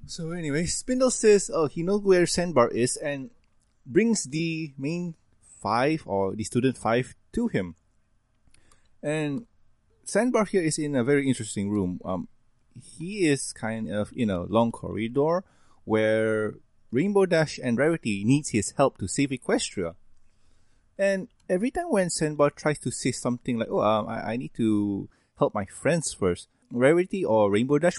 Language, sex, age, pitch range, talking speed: English, male, 20-39, 105-155 Hz, 160 wpm